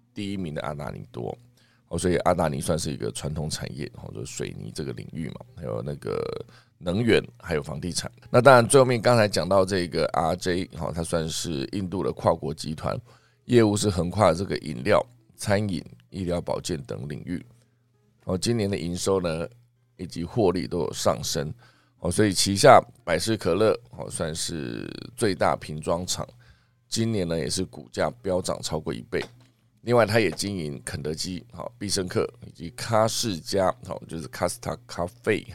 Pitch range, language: 85-115 Hz, Chinese